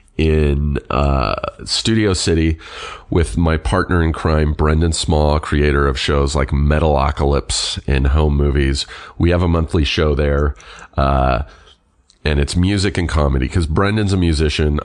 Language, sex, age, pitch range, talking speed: English, male, 30-49, 70-85 Hz, 140 wpm